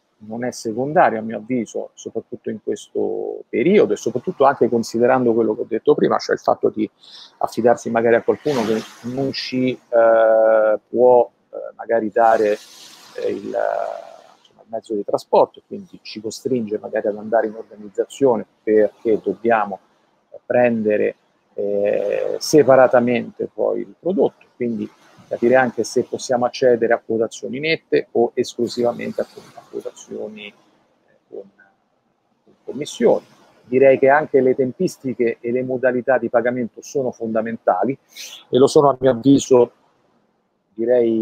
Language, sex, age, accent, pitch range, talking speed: Italian, male, 40-59, native, 110-140 Hz, 135 wpm